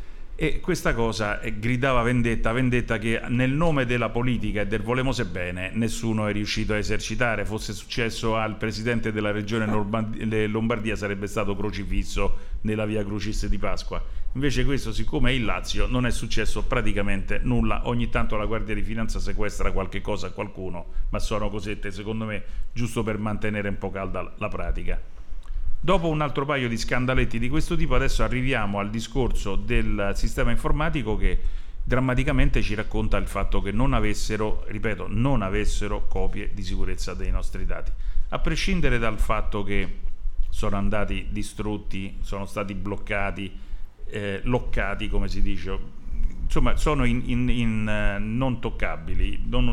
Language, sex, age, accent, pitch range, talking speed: Italian, male, 50-69, native, 100-120 Hz, 155 wpm